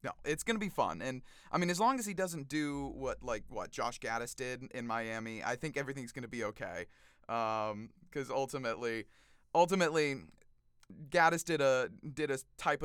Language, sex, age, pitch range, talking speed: English, male, 30-49, 115-160 Hz, 185 wpm